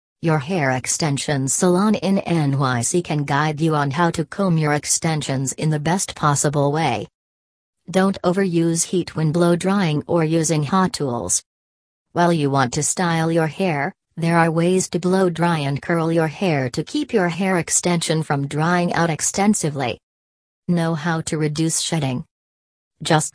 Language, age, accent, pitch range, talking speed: English, 40-59, American, 140-175 Hz, 160 wpm